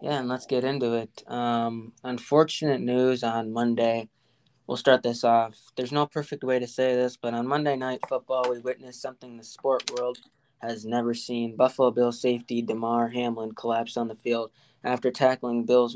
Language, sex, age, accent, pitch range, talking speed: English, male, 20-39, American, 115-130 Hz, 180 wpm